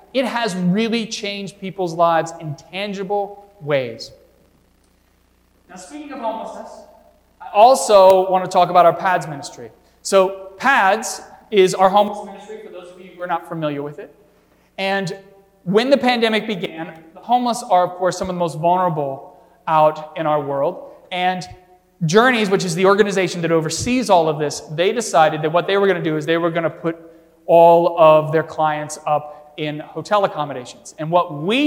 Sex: male